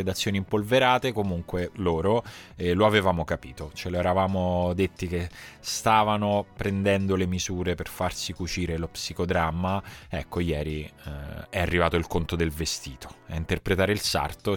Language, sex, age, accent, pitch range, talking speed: Italian, male, 20-39, native, 85-100 Hz, 140 wpm